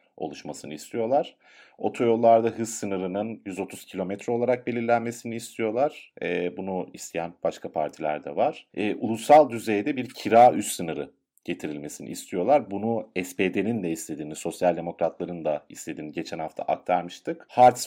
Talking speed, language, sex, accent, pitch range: 125 wpm, Turkish, male, native, 90-115 Hz